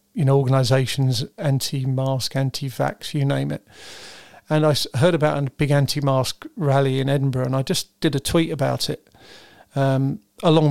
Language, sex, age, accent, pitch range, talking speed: English, male, 40-59, British, 135-150 Hz, 155 wpm